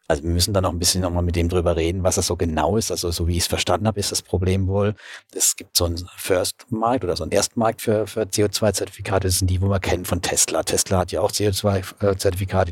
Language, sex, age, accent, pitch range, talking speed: German, male, 50-69, German, 90-105 Hz, 250 wpm